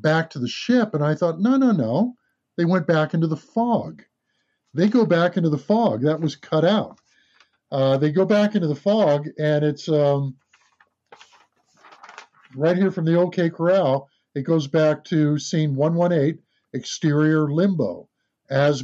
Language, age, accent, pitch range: English, 50-69, American, 145-175 Hz